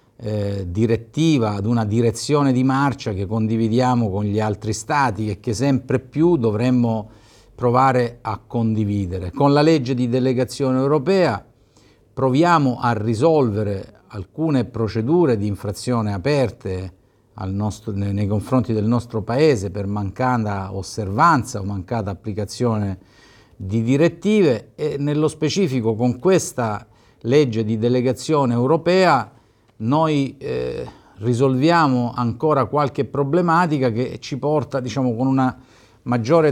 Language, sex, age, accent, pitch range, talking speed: Italian, male, 50-69, native, 110-135 Hz, 120 wpm